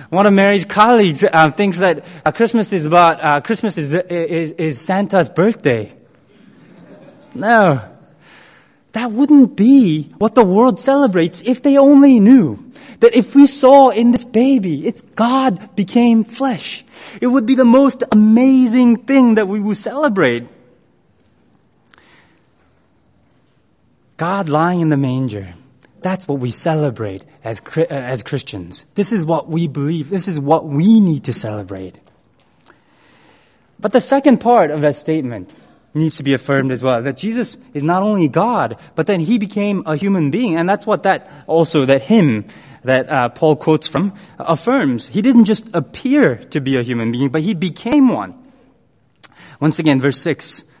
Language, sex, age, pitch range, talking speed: English, male, 20-39, 150-230 Hz, 155 wpm